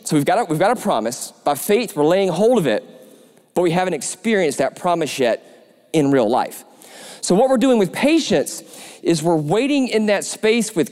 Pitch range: 185-255 Hz